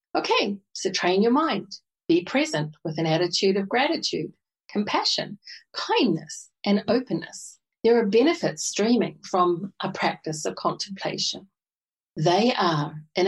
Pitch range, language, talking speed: 175-225 Hz, English, 125 wpm